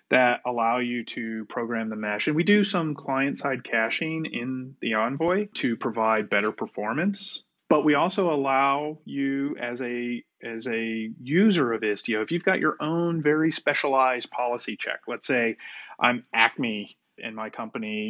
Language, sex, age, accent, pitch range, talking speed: English, male, 30-49, American, 115-150 Hz, 155 wpm